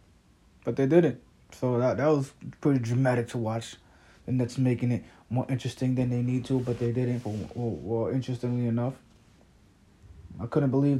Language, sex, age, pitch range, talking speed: English, male, 20-39, 105-135 Hz, 175 wpm